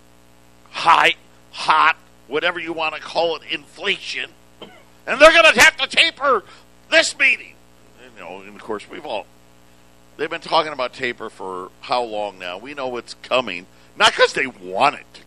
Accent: American